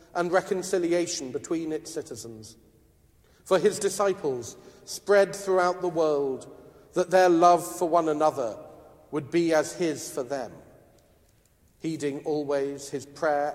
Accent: British